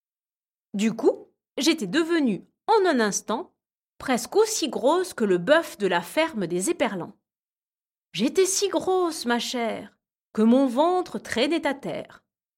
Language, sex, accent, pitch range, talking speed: French, female, French, 200-320 Hz, 140 wpm